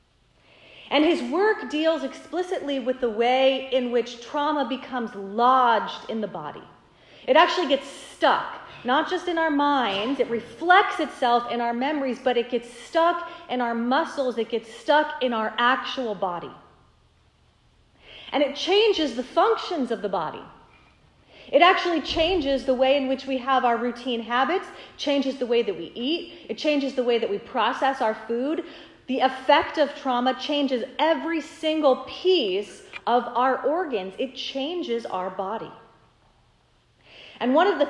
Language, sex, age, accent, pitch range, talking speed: English, female, 30-49, American, 245-310 Hz, 155 wpm